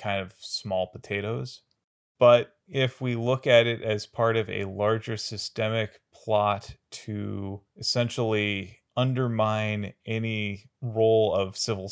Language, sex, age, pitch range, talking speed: English, male, 30-49, 95-115 Hz, 120 wpm